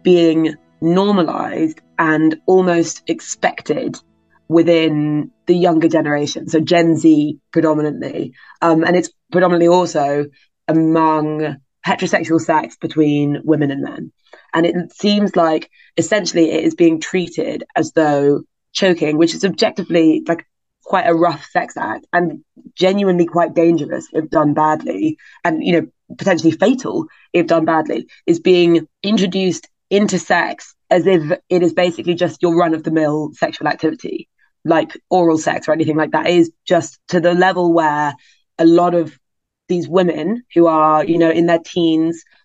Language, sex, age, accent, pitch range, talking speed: English, female, 20-39, British, 160-185 Hz, 145 wpm